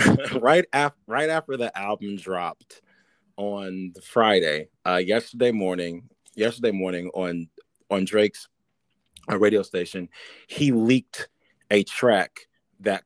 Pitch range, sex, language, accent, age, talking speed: 105-155 Hz, male, English, American, 30-49, 120 wpm